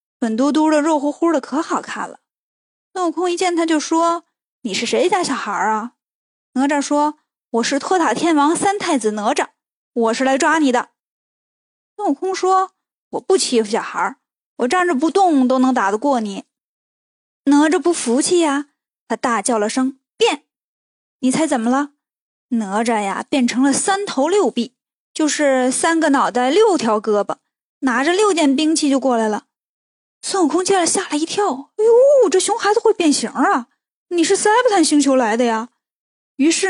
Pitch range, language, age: 250-345 Hz, Chinese, 20-39